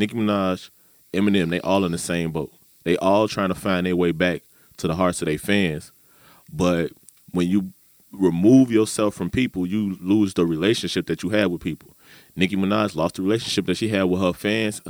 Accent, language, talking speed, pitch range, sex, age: American, English, 200 wpm, 85-100 Hz, male, 20-39